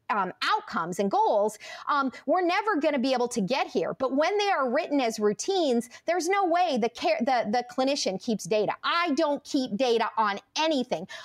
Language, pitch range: English, 225-320 Hz